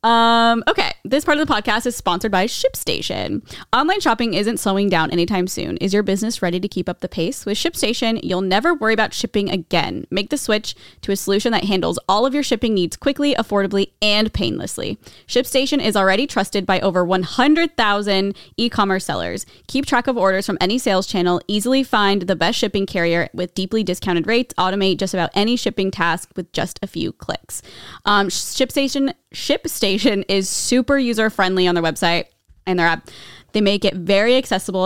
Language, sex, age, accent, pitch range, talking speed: English, female, 20-39, American, 180-220 Hz, 185 wpm